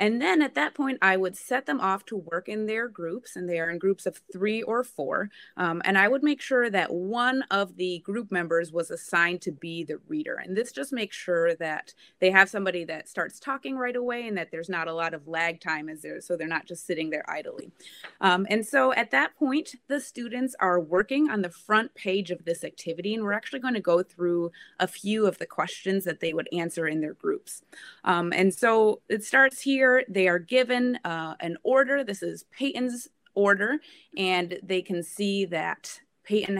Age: 20-39